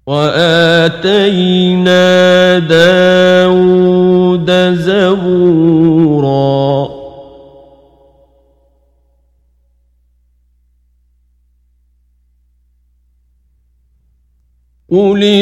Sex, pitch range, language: male, 160-200 Hz, Persian